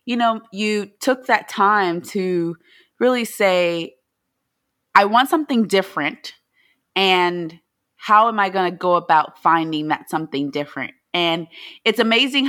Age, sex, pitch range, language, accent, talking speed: 30-49, female, 180-225 Hz, English, American, 135 wpm